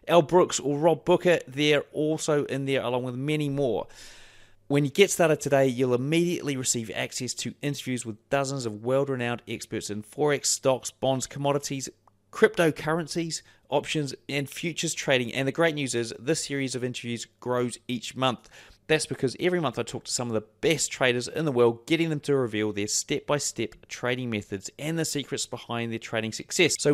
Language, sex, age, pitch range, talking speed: English, male, 30-49, 120-155 Hz, 185 wpm